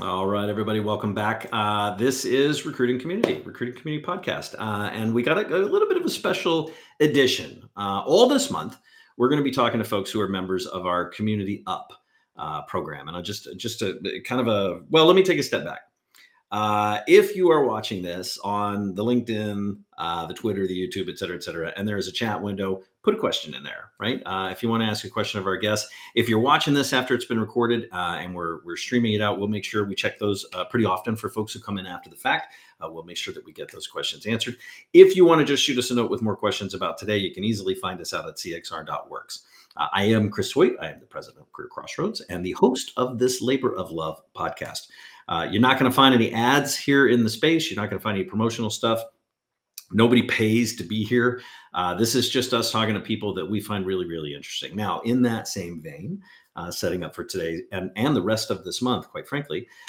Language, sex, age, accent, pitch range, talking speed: English, male, 40-59, American, 100-125 Hz, 245 wpm